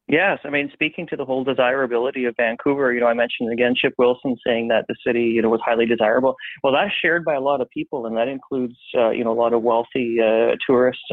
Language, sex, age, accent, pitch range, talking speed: English, male, 30-49, American, 120-145 Hz, 250 wpm